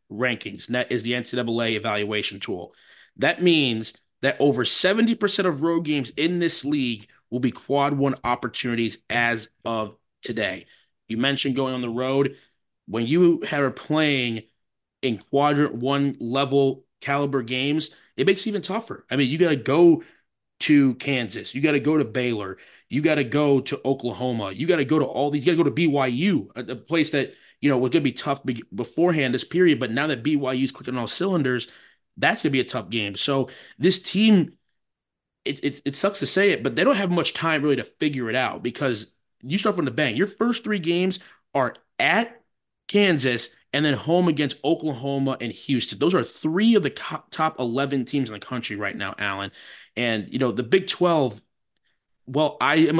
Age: 30-49